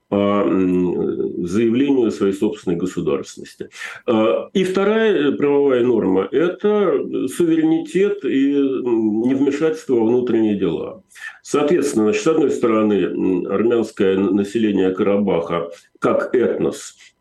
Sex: male